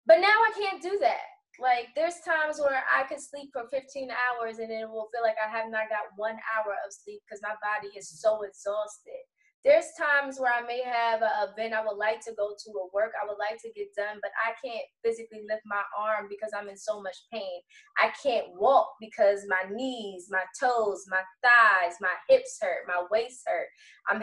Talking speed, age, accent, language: 220 wpm, 20-39, American, English